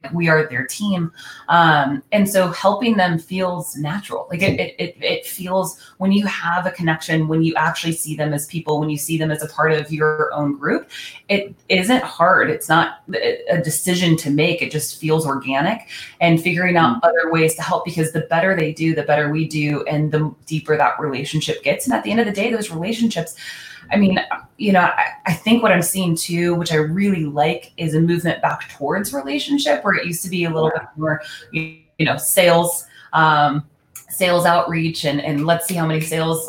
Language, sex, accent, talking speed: English, female, American, 205 wpm